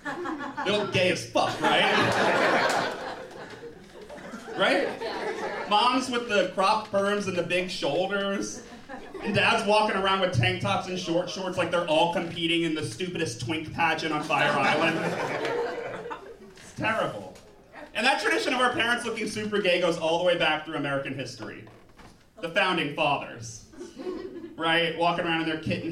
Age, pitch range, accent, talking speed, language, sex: 30-49, 165-215 Hz, American, 155 wpm, English, male